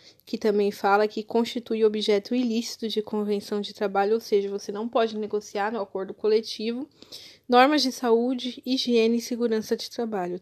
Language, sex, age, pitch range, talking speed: Portuguese, female, 20-39, 215-255 Hz, 160 wpm